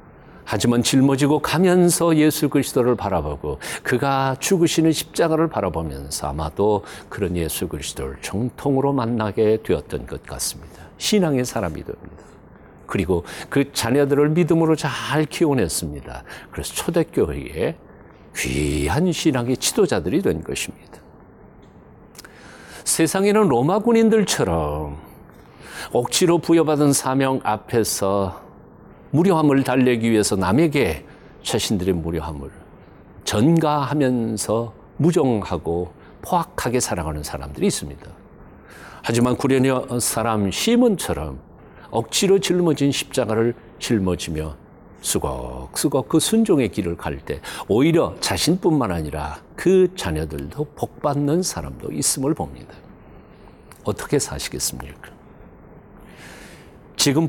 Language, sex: Korean, male